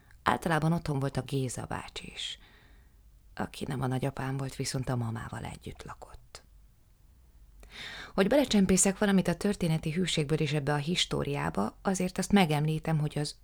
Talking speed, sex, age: 145 wpm, female, 20-39